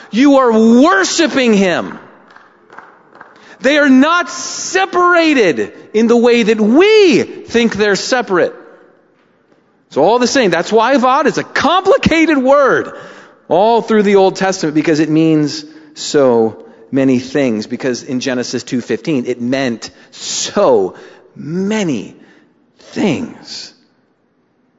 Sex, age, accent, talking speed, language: male, 40-59, American, 115 wpm, English